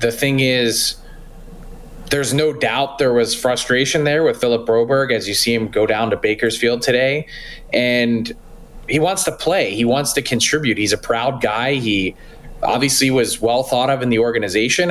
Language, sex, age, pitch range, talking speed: English, male, 20-39, 125-160 Hz, 175 wpm